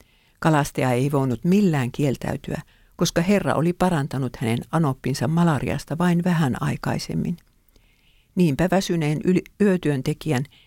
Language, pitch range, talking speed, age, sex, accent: English, 135-175 Hz, 100 wpm, 60-79, female, Finnish